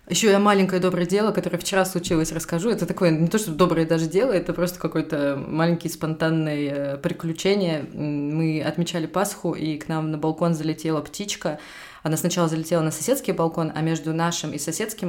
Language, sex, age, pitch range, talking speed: Russian, female, 20-39, 155-175 Hz, 175 wpm